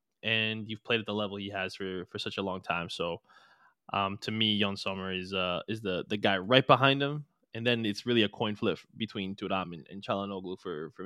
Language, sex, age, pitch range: English, male, 20-39, 100-115 Hz